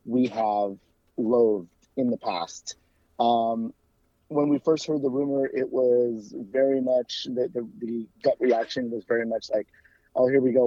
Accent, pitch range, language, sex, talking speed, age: American, 110-130 Hz, English, male, 170 wpm, 30-49